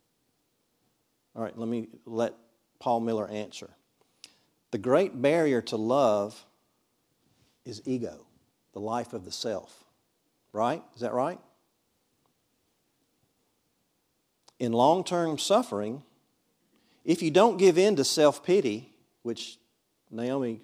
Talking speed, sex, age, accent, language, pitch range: 105 wpm, male, 50-69, American, English, 115-150 Hz